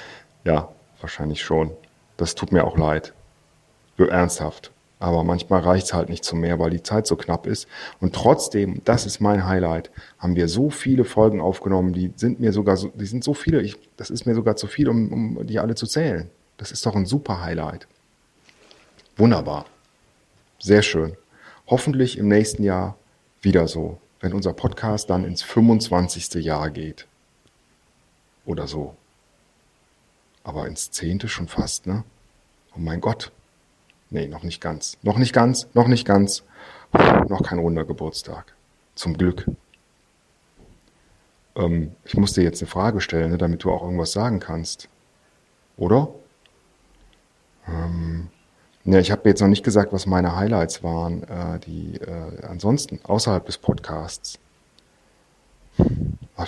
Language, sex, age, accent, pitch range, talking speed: German, male, 40-59, German, 85-110 Hz, 155 wpm